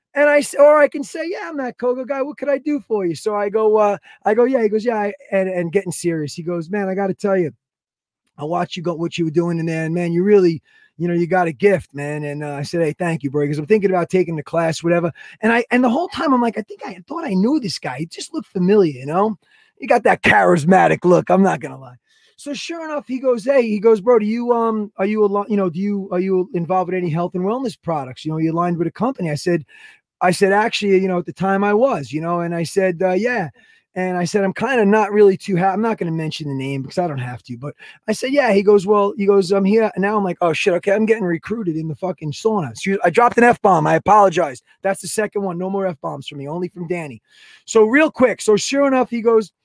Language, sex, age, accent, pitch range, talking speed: English, male, 20-39, American, 175-220 Hz, 285 wpm